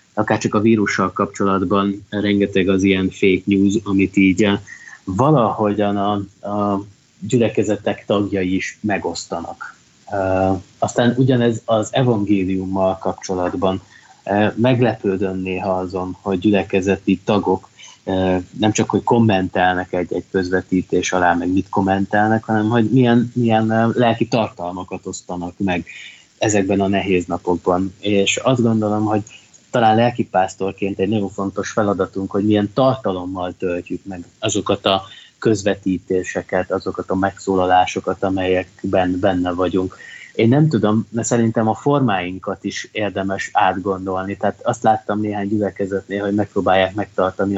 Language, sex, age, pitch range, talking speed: Hungarian, male, 20-39, 95-105 Hz, 120 wpm